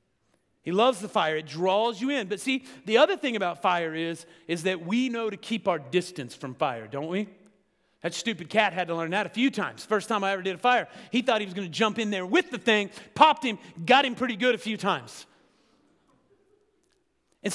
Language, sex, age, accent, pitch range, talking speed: English, male, 30-49, American, 145-220 Hz, 230 wpm